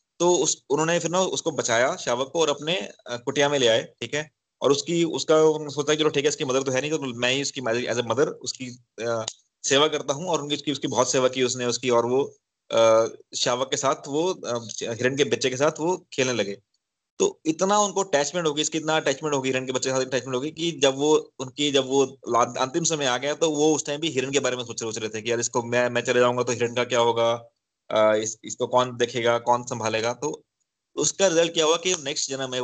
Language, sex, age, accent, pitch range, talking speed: Hindi, male, 20-39, native, 125-150 Hz, 210 wpm